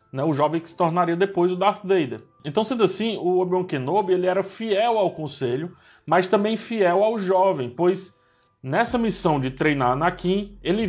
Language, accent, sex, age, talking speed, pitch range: Portuguese, Brazilian, male, 20-39, 175 wpm, 150-200 Hz